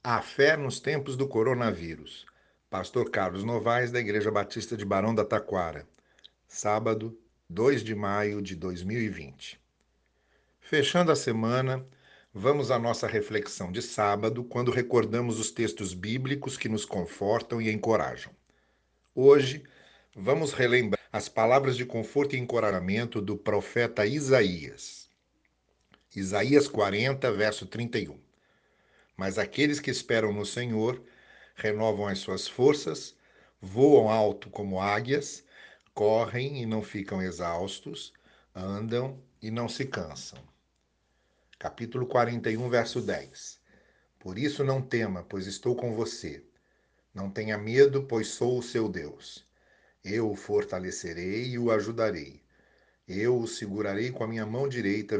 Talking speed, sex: 125 wpm, male